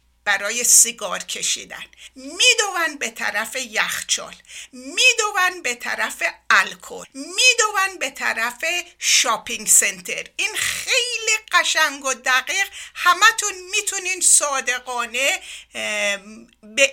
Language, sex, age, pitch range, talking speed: Persian, female, 60-79, 240-360 Hz, 90 wpm